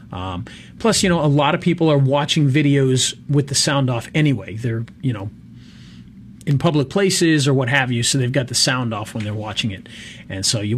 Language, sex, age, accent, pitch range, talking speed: English, male, 40-59, American, 125-160 Hz, 215 wpm